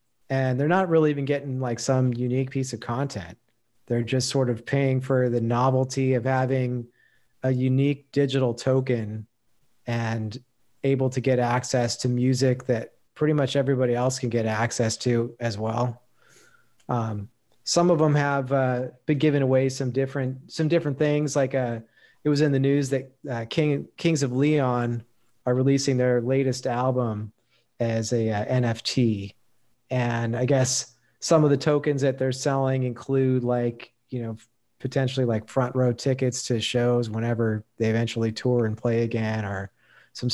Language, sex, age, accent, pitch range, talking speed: English, male, 30-49, American, 120-135 Hz, 165 wpm